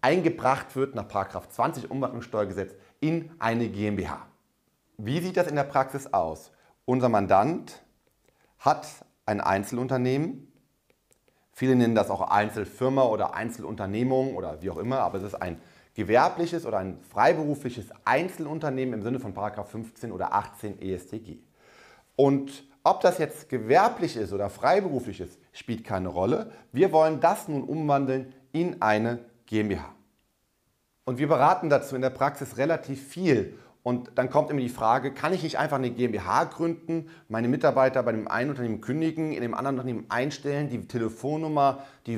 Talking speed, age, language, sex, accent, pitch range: 150 wpm, 30-49, German, male, German, 110-145 Hz